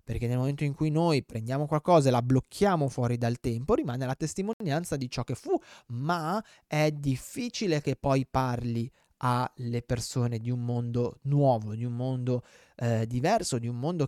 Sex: male